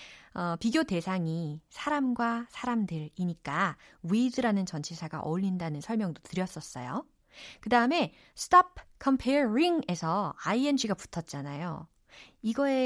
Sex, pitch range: female, 170-265 Hz